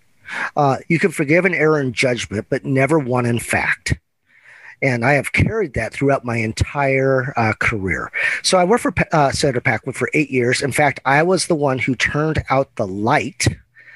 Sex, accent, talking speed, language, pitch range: male, American, 190 wpm, English, 120-160 Hz